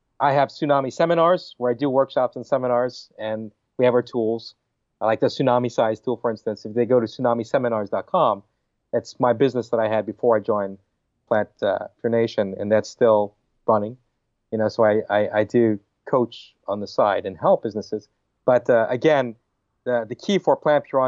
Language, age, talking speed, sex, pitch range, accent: English, 40-59, 195 wpm, male, 115-155 Hz, American